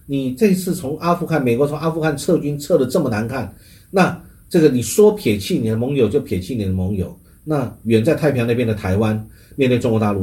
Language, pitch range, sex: Chinese, 95-130 Hz, male